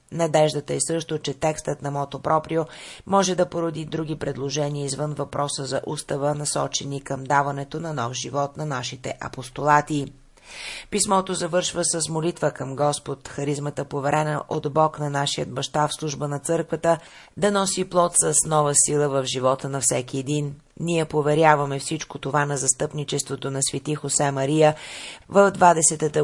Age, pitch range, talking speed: 30-49, 140-160 Hz, 150 wpm